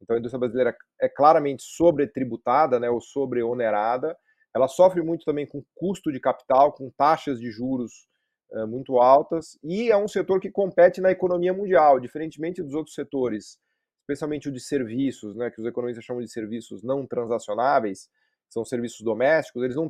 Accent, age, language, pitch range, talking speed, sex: Brazilian, 30-49, Portuguese, 130-175 Hz, 165 wpm, male